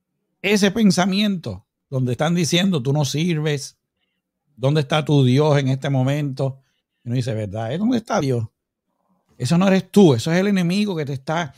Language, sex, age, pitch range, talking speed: Spanish, male, 60-79, 130-175 Hz, 170 wpm